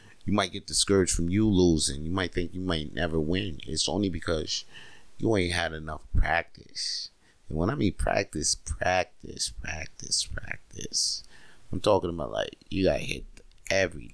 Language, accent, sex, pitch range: English, American, male, 80-105 Hz